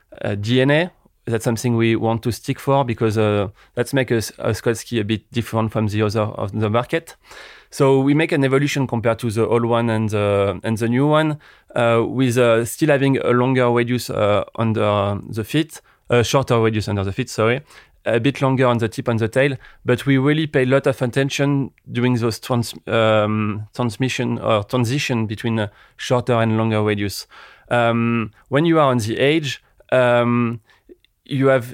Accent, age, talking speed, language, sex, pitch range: French, 30-49, 195 wpm, English, male, 110-130 Hz